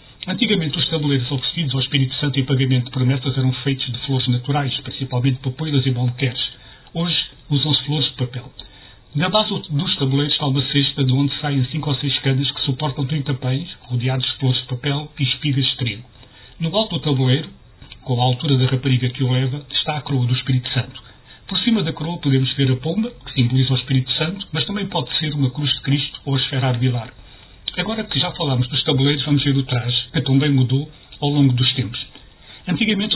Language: Portuguese